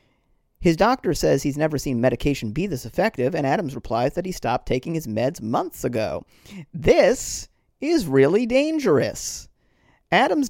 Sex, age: male, 40-59